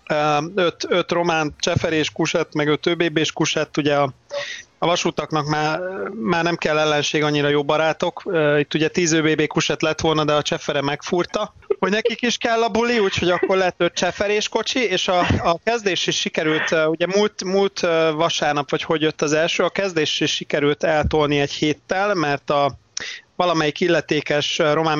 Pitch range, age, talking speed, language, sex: 145-175 Hz, 30-49, 175 wpm, Hungarian, male